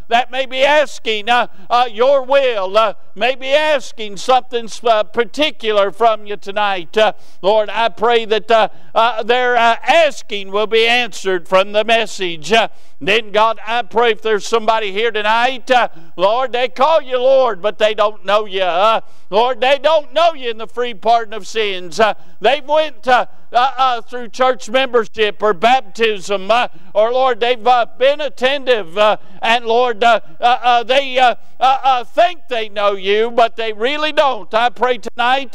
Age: 60-79